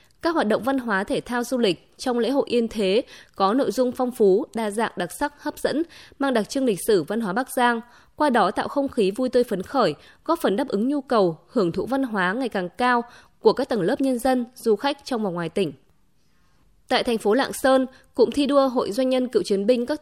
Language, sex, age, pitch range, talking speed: Vietnamese, female, 20-39, 205-260 Hz, 250 wpm